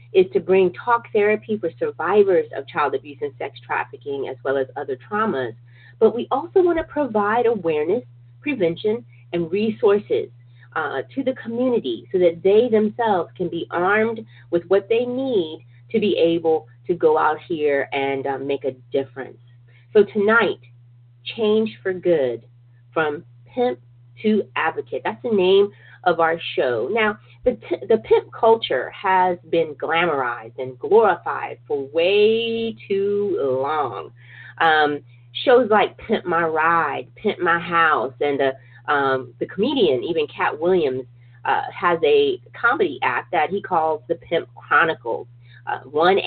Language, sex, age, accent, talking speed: English, female, 30-49, American, 145 wpm